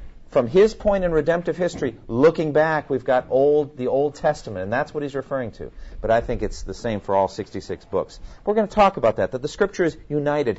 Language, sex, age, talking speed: English, male, 40-59, 220 wpm